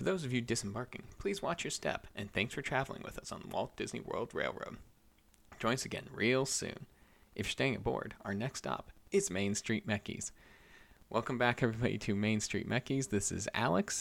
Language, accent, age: English, American, 30-49